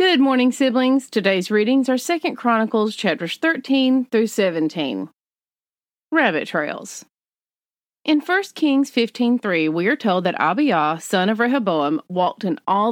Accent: American